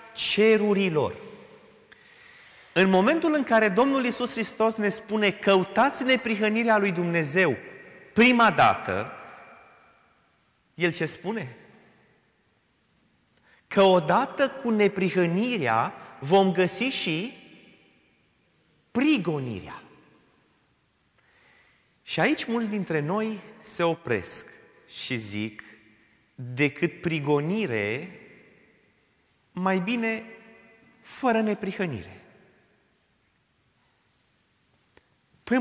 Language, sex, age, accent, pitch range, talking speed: Romanian, male, 30-49, native, 150-225 Hz, 70 wpm